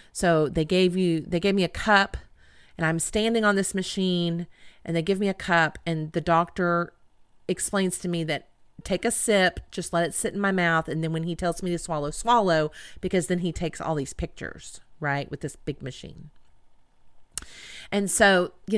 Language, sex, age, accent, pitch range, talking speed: English, female, 40-59, American, 160-205 Hz, 200 wpm